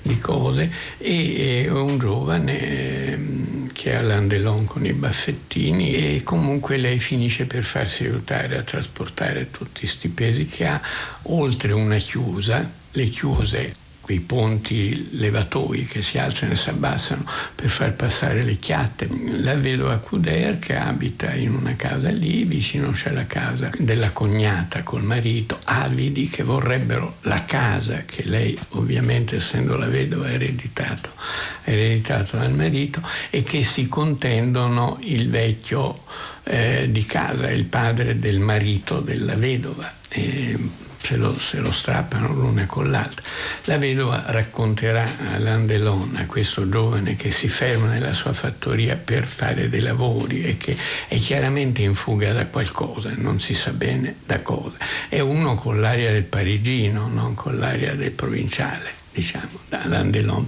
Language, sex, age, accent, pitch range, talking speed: Italian, male, 60-79, native, 110-140 Hz, 145 wpm